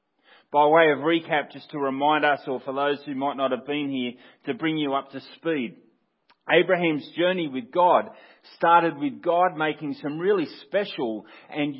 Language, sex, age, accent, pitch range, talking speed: English, male, 30-49, Australian, 145-180 Hz, 180 wpm